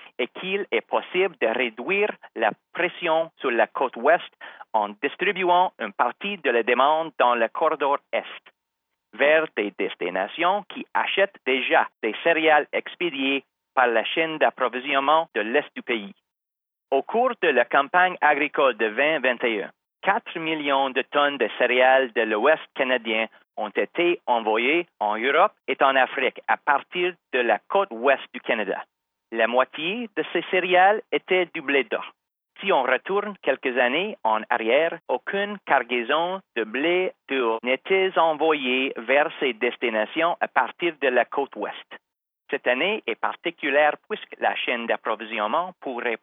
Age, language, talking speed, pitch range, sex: 40-59, English, 150 wpm, 130-185 Hz, male